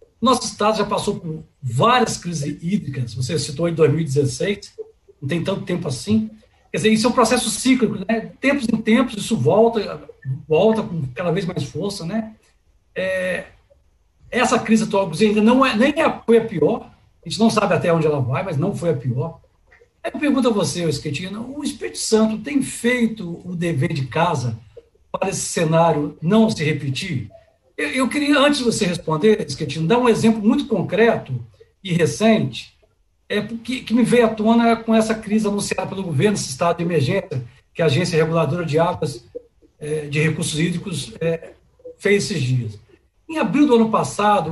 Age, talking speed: 60-79, 180 wpm